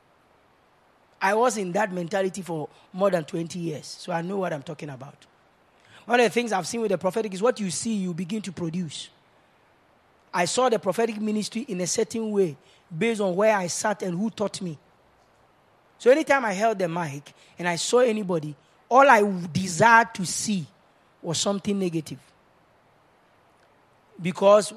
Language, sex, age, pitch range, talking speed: English, male, 30-49, 165-215 Hz, 170 wpm